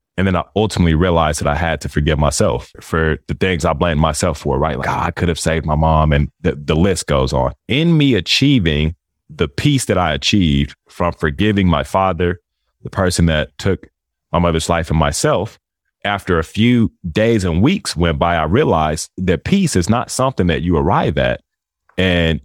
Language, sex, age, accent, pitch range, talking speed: English, male, 30-49, American, 80-100 Hz, 195 wpm